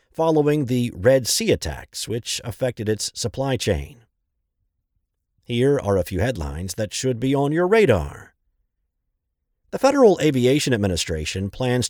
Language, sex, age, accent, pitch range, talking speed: English, male, 50-69, American, 100-145 Hz, 130 wpm